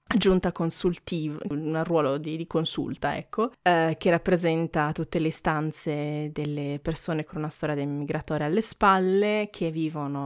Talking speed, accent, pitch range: 145 wpm, native, 155-190 Hz